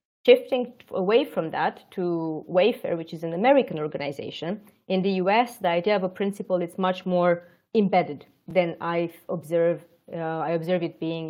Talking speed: 165 wpm